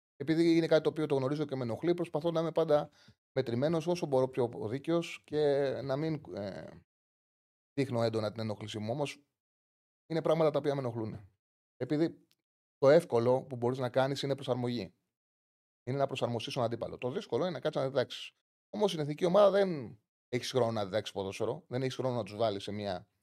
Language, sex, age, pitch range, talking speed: Greek, male, 30-49, 110-155 Hz, 190 wpm